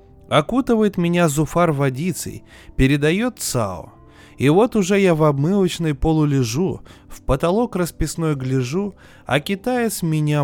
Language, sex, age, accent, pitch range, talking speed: Russian, male, 20-39, native, 115-170 Hz, 120 wpm